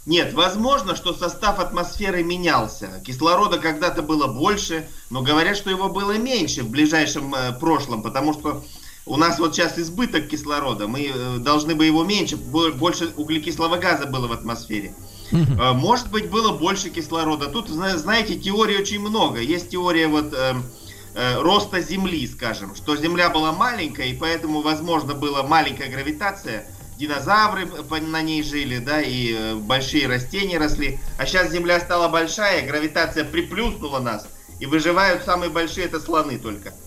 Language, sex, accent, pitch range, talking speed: Russian, male, native, 140-185 Hz, 140 wpm